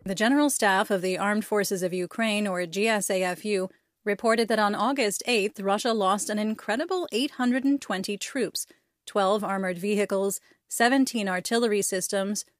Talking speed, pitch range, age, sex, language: 135 wpm, 195-235 Hz, 30-49, female, English